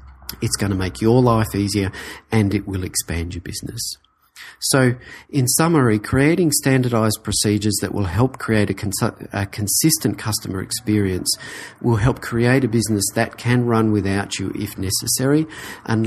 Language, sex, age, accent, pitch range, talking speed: English, male, 40-59, Australian, 100-125 Hz, 155 wpm